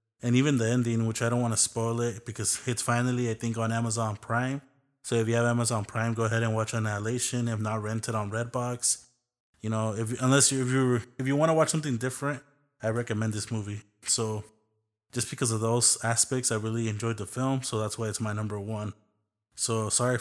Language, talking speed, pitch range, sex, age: English, 220 wpm, 110-125 Hz, male, 20-39